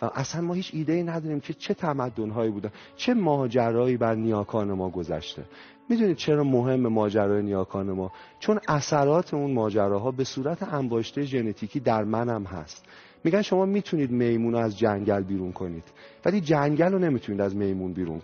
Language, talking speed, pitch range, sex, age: Persian, 170 wpm, 115-160 Hz, male, 30-49